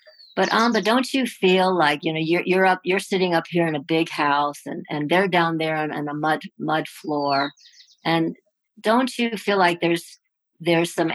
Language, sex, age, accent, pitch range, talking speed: English, female, 60-79, American, 160-215 Hz, 210 wpm